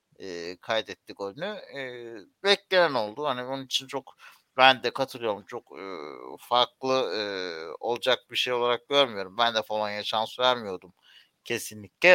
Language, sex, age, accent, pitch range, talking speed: Turkish, male, 60-79, native, 115-150 Hz, 140 wpm